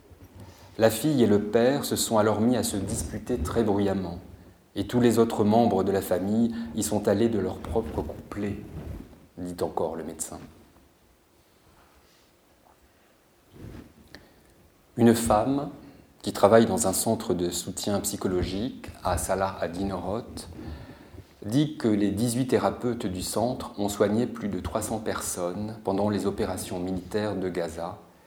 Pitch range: 90-115 Hz